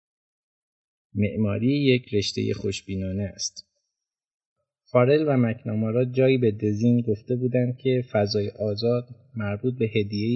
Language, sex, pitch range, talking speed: Persian, male, 105-125 Hz, 110 wpm